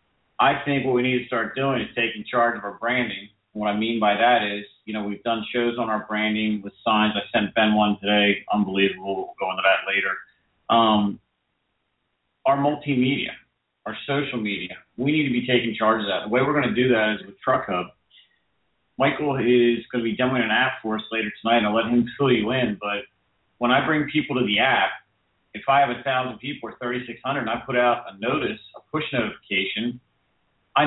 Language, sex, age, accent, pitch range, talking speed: English, male, 40-59, American, 110-130 Hz, 220 wpm